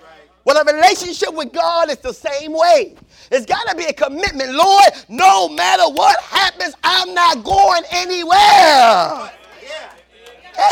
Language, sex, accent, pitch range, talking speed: English, male, American, 240-345 Hz, 140 wpm